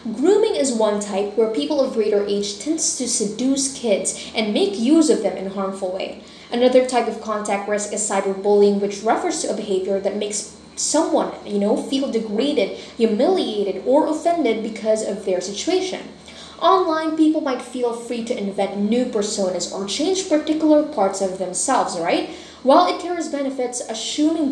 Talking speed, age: 170 wpm, 20-39